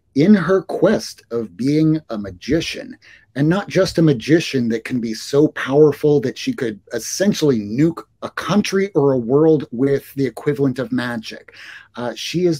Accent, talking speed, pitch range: American, 165 wpm, 120-170 Hz